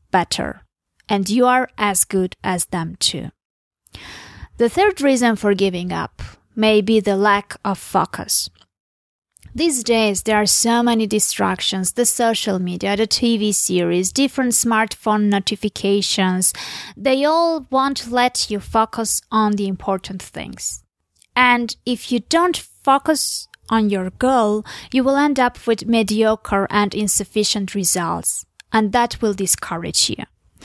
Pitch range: 200-250 Hz